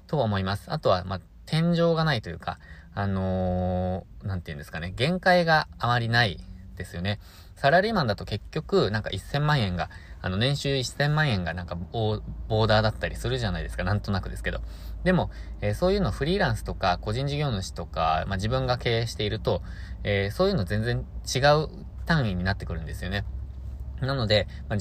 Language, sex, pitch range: Japanese, male, 90-125 Hz